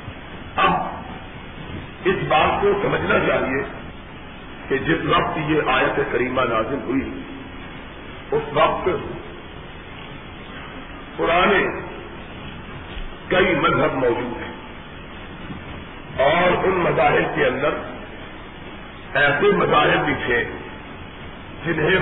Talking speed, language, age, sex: 80 wpm, Urdu, 50-69, male